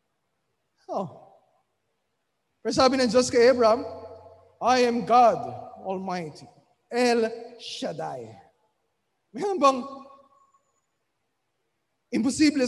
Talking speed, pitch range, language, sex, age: 65 wpm, 235-275 Hz, Filipino, male, 20-39